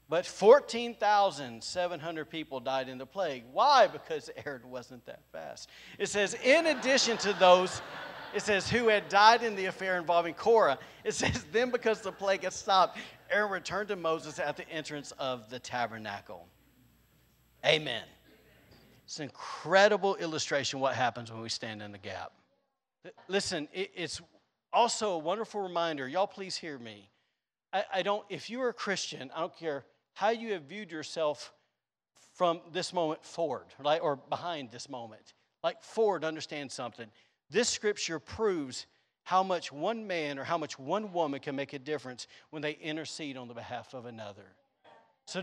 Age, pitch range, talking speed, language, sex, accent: 40-59, 140-205 Hz, 165 wpm, English, male, American